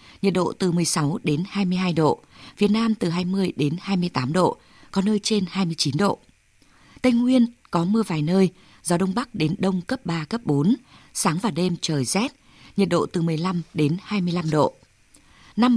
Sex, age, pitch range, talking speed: female, 20-39, 165-210 Hz, 180 wpm